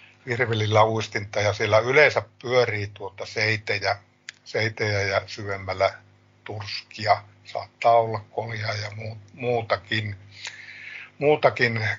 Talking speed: 85 wpm